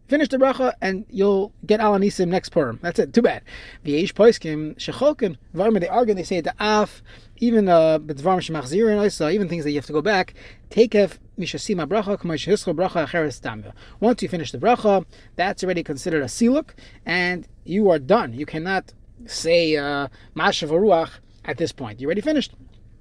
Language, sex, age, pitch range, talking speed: English, male, 30-49, 150-210 Hz, 165 wpm